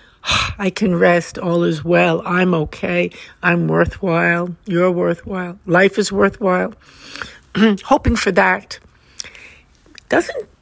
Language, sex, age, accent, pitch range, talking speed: English, female, 60-79, American, 175-220 Hz, 105 wpm